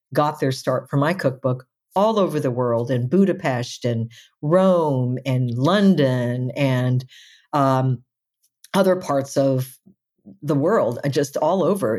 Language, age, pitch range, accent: English, 50-69, 135-175 Hz, American